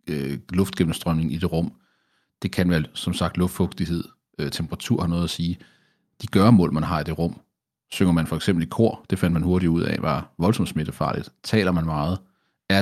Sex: male